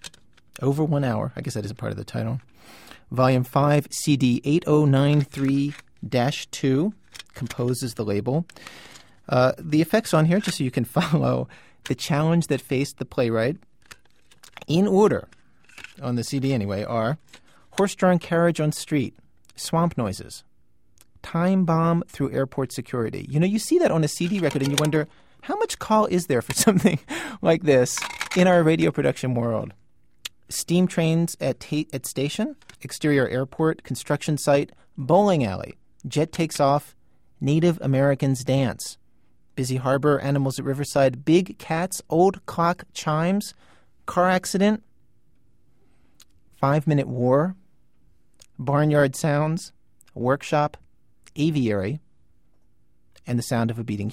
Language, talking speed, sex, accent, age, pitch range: English, 135 wpm, male, American, 40-59, 130-165 Hz